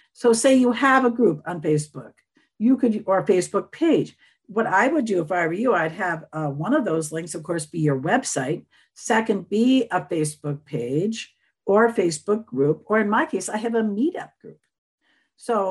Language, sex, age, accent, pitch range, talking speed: English, female, 50-69, American, 160-230 Hz, 205 wpm